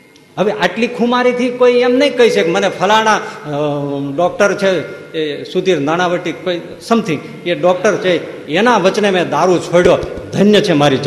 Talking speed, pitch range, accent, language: 55 wpm, 160-235 Hz, native, Gujarati